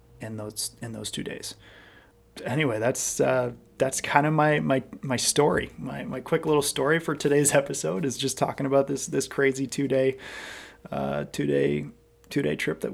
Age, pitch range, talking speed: 20-39, 110-140 Hz, 185 wpm